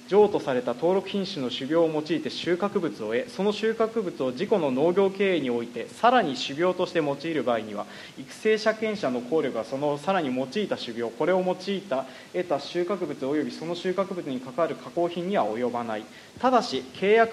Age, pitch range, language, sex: 20-39, 145-215 Hz, Japanese, male